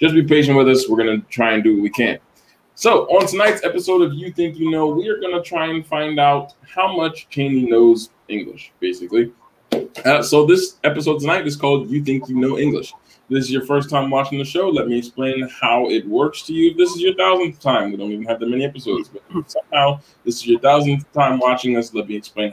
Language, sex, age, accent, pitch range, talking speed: English, male, 20-39, American, 120-165 Hz, 235 wpm